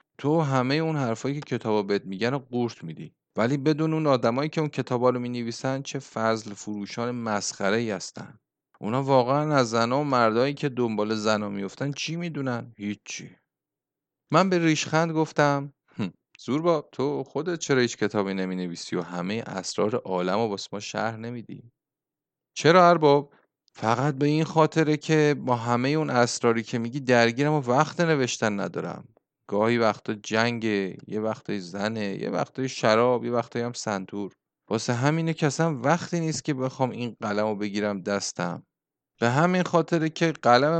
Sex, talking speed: male, 165 wpm